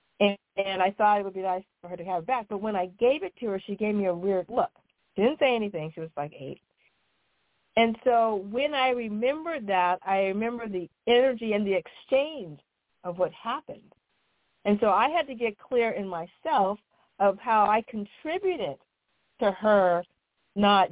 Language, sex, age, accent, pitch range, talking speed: English, female, 50-69, American, 180-225 Hz, 190 wpm